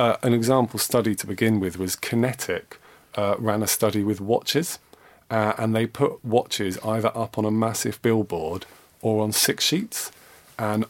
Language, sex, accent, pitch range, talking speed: English, male, British, 100-115 Hz, 170 wpm